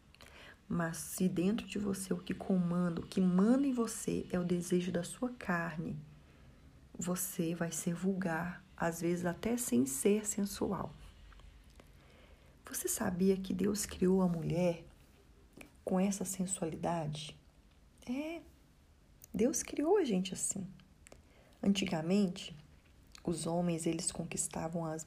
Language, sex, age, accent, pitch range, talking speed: Portuguese, female, 40-59, Brazilian, 145-195 Hz, 120 wpm